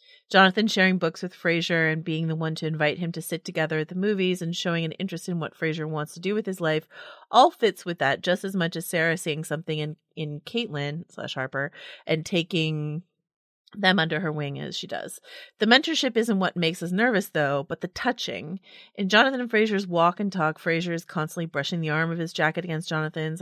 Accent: American